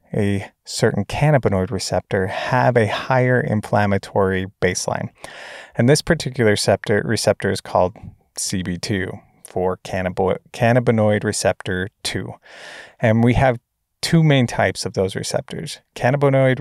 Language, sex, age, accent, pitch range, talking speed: English, male, 30-49, American, 95-125 Hz, 110 wpm